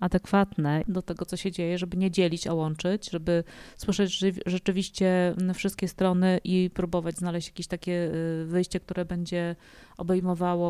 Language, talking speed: Polish, 145 wpm